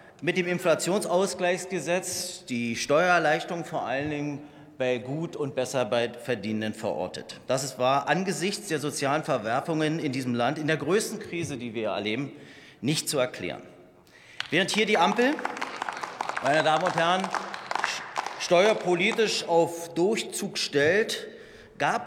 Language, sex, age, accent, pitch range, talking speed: German, male, 40-59, German, 140-185 Hz, 130 wpm